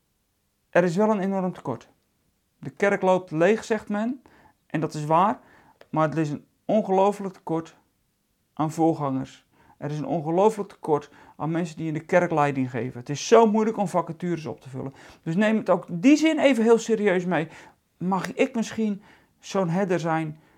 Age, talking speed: 40-59, 180 wpm